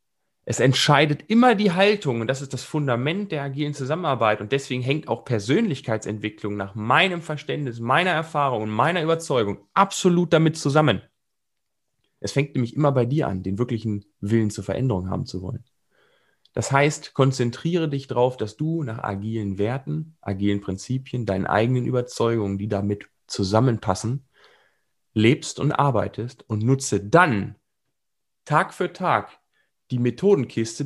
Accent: German